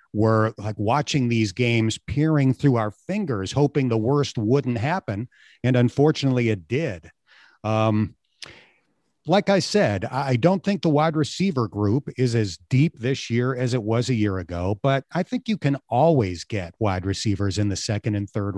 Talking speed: 175 wpm